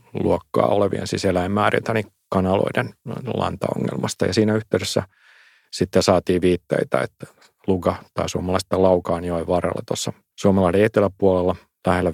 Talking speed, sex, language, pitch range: 115 wpm, male, Finnish, 90-105 Hz